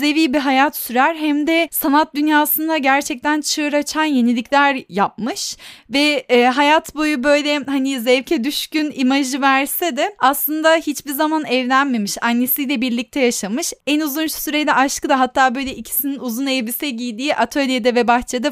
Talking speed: 145 wpm